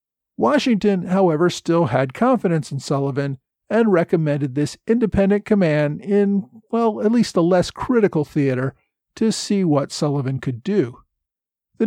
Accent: American